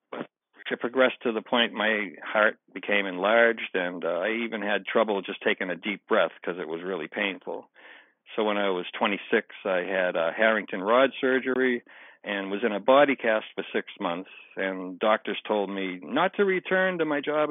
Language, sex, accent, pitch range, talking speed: English, male, American, 110-145 Hz, 190 wpm